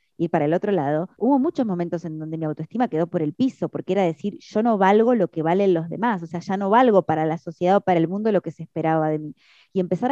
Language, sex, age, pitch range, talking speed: Spanish, female, 20-39, 165-210 Hz, 280 wpm